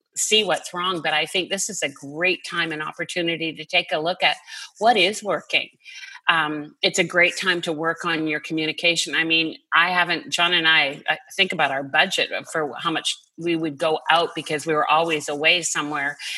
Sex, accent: female, American